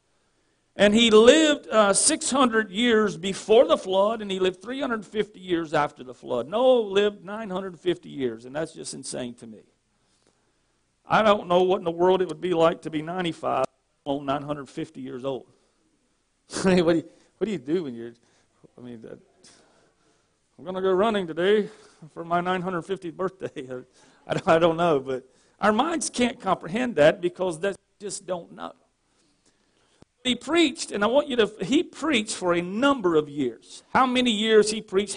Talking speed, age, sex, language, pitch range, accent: 165 wpm, 50-69, male, English, 170-235 Hz, American